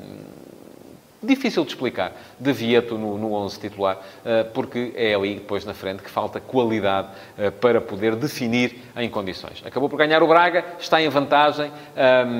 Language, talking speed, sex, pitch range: Portuguese, 145 wpm, male, 110-145 Hz